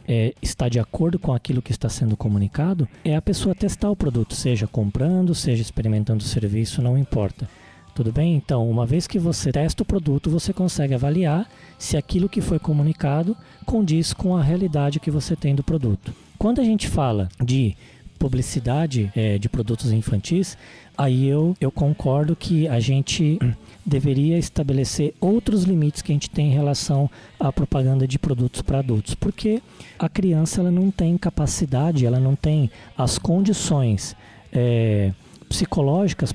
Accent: Brazilian